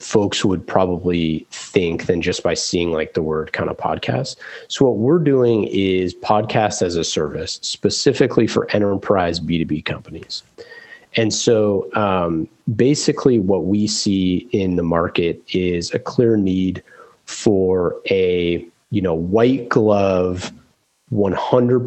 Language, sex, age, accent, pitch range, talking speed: English, male, 30-49, American, 85-105 Hz, 135 wpm